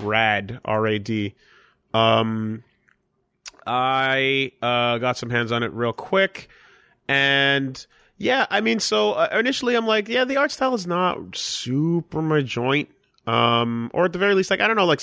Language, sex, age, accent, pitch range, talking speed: English, male, 30-49, American, 115-155 Hz, 165 wpm